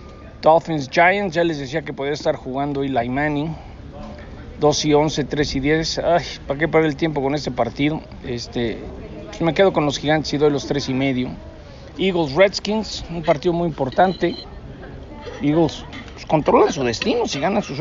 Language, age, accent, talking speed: English, 50-69, Mexican, 180 wpm